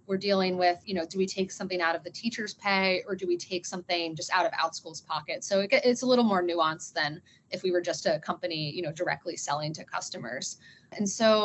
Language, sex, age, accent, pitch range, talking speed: English, female, 20-39, American, 175-205 Hz, 245 wpm